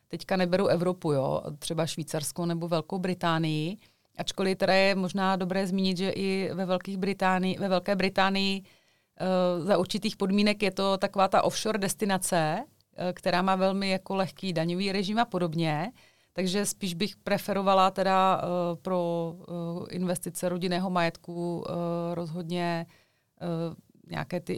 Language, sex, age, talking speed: Czech, female, 30-49, 115 wpm